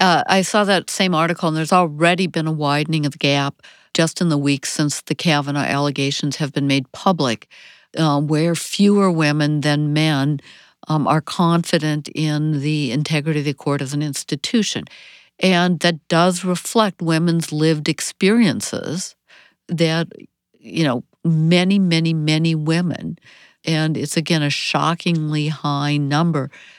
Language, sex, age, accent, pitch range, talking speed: English, female, 60-79, American, 145-170 Hz, 150 wpm